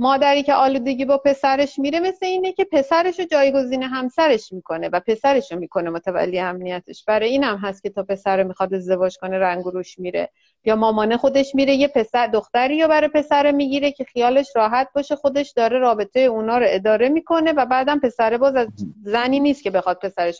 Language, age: Persian, 30-49